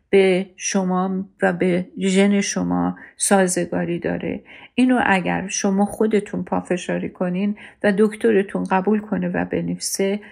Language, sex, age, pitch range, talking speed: Persian, female, 50-69, 180-220 Hz, 115 wpm